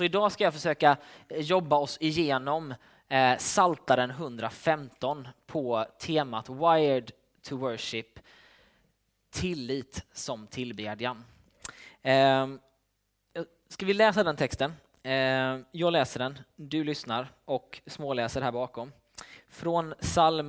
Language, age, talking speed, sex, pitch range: Swedish, 20-39, 95 wpm, male, 120-155 Hz